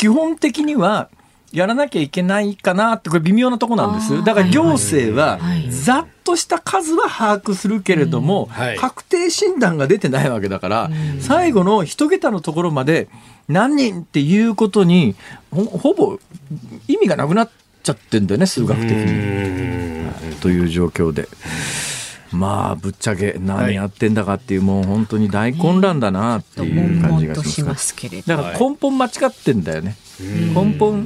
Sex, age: male, 40-59